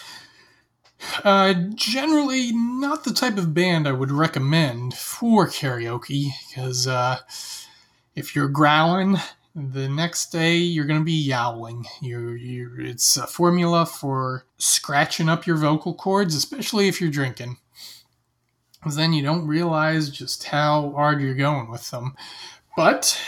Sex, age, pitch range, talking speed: male, 30-49, 130-170 Hz, 135 wpm